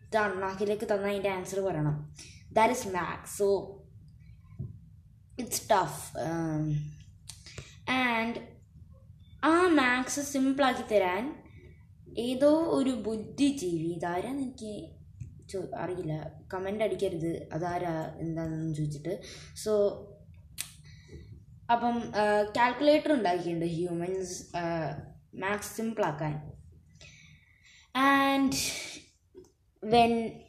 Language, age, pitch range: Malayalam, 20-39, 175-250 Hz